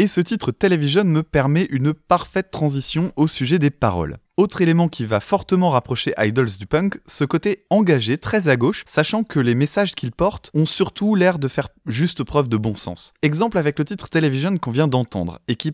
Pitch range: 125-175 Hz